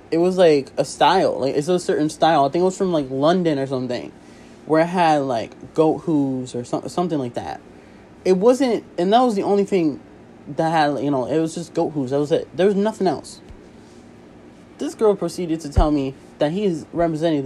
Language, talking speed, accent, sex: English, 215 wpm, American, male